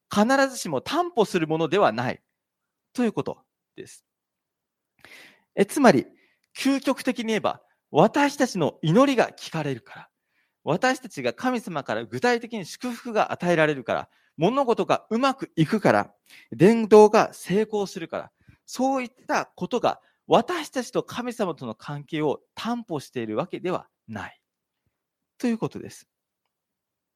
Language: Japanese